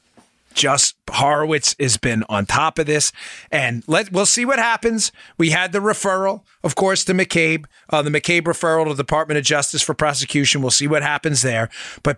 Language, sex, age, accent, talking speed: English, male, 30-49, American, 190 wpm